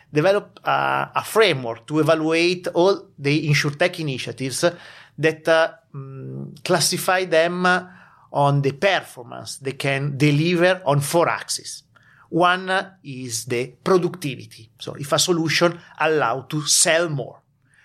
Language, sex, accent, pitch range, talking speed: English, male, Italian, 135-170 Hz, 130 wpm